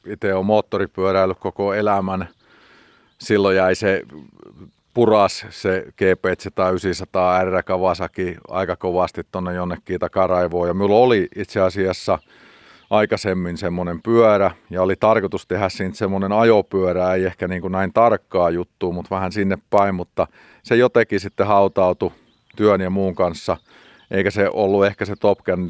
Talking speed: 140 wpm